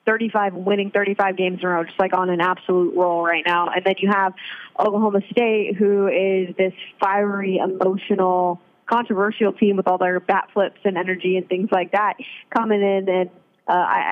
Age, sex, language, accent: 20-39, female, English, American